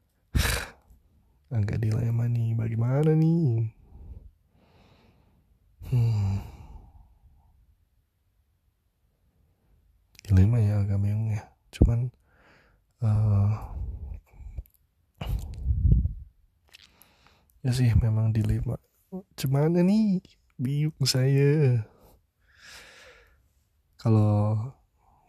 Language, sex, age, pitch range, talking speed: Indonesian, male, 20-39, 85-105 Hz, 50 wpm